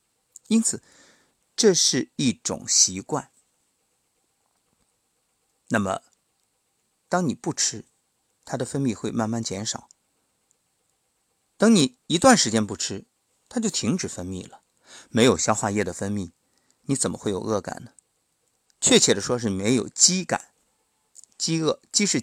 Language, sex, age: Chinese, male, 50-69